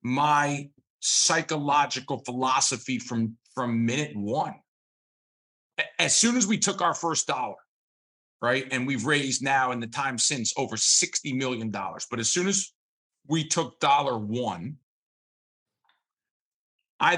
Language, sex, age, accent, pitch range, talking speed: English, male, 40-59, American, 125-165 Hz, 125 wpm